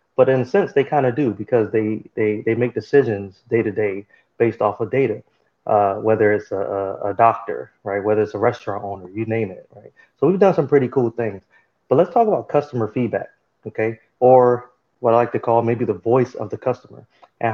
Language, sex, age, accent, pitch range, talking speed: English, male, 30-49, American, 105-125 Hz, 210 wpm